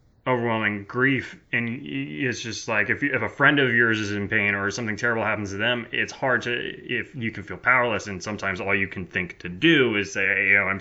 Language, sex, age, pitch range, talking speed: English, male, 20-39, 105-130 Hz, 245 wpm